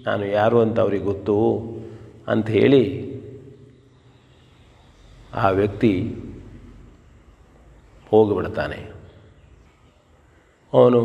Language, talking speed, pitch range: Kannada, 55 wpm, 110-125 Hz